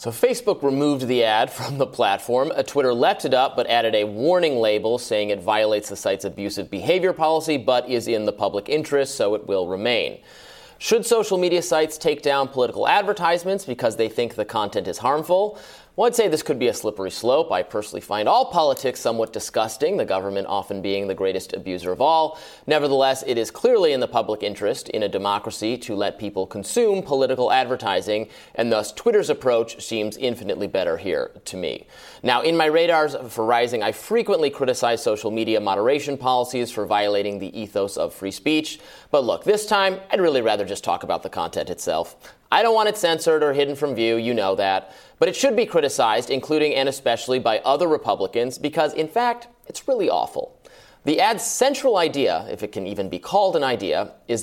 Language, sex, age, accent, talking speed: English, male, 30-49, American, 195 wpm